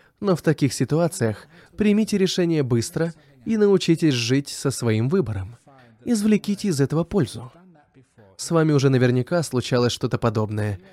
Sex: male